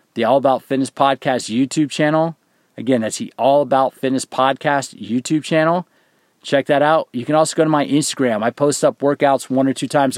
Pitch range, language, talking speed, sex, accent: 130-150 Hz, English, 200 wpm, male, American